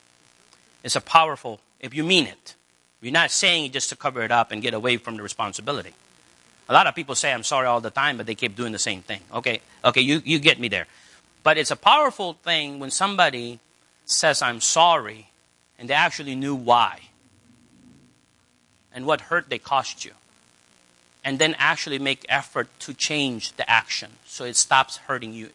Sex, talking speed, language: male, 190 wpm, English